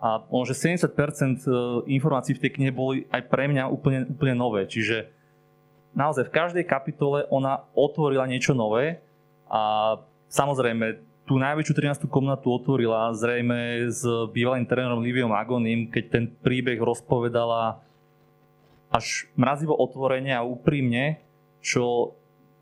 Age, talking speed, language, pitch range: 20-39, 125 wpm, Slovak, 120-145 Hz